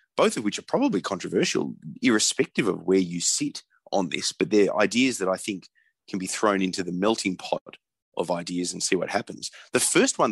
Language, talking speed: English, 205 wpm